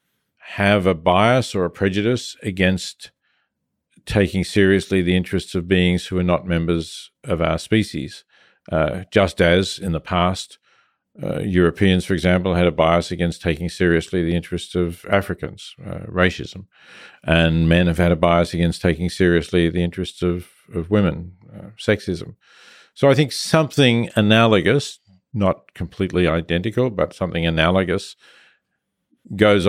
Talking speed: 140 wpm